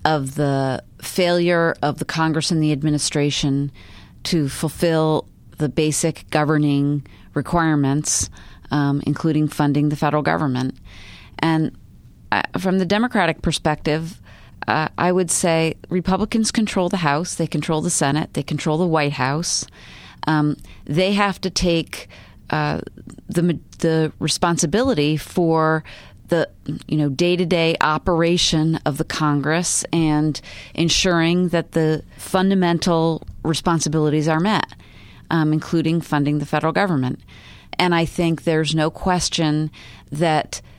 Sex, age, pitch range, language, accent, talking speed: female, 30-49, 150-170 Hz, English, American, 120 wpm